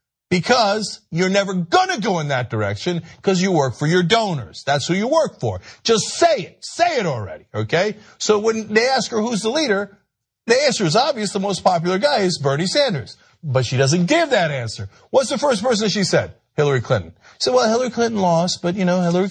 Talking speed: 210 wpm